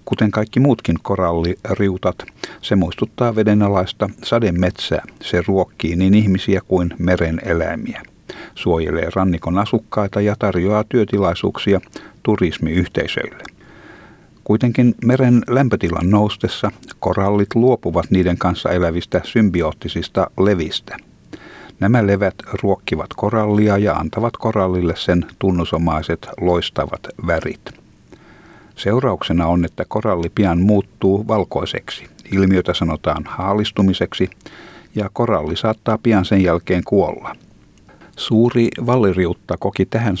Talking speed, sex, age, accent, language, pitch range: 95 wpm, male, 60-79, native, Finnish, 85-105 Hz